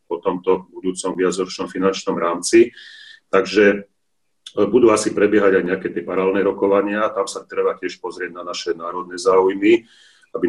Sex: male